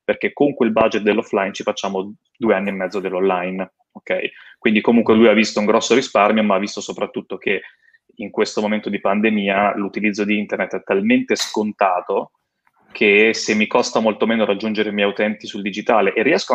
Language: Italian